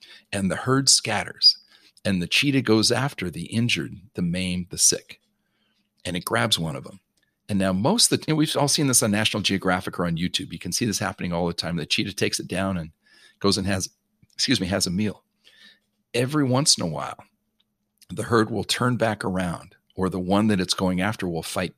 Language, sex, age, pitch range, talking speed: English, male, 50-69, 90-115 Hz, 220 wpm